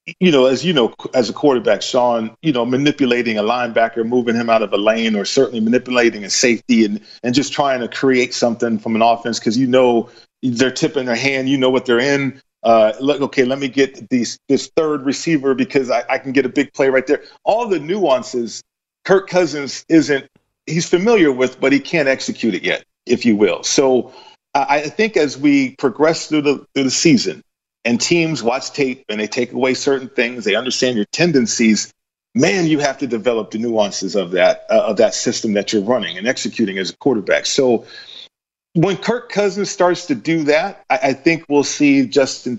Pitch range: 120-150 Hz